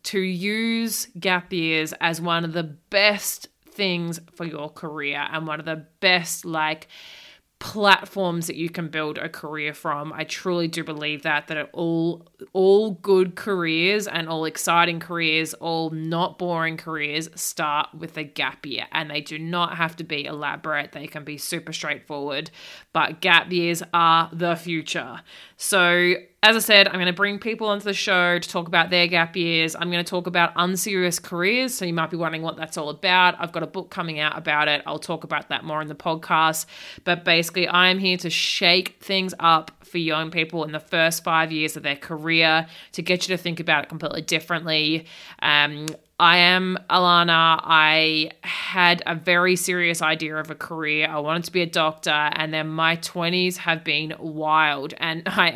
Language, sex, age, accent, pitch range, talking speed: English, female, 20-39, Australian, 155-180 Hz, 190 wpm